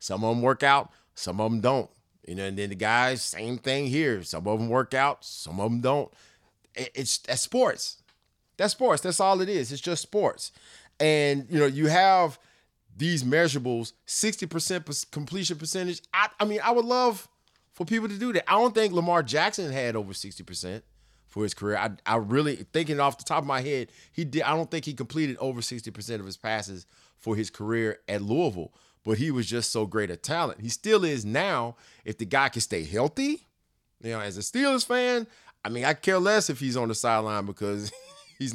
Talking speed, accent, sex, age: 210 wpm, American, male, 30-49